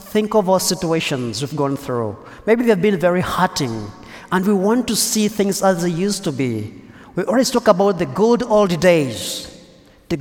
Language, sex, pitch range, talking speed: English, male, 155-210 Hz, 190 wpm